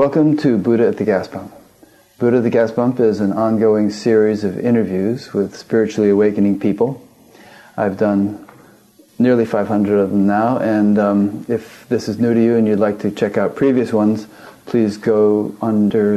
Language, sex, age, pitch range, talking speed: English, male, 40-59, 105-115 Hz, 180 wpm